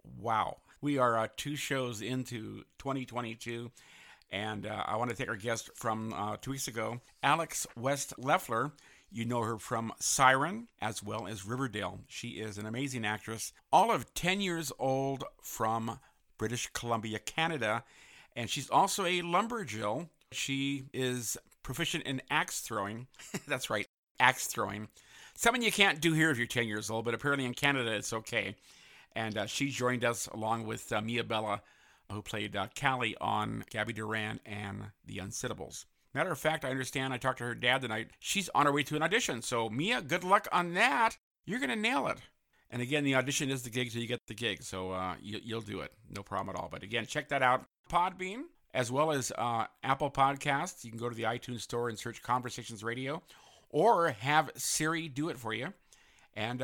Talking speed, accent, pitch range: 190 wpm, American, 110-140 Hz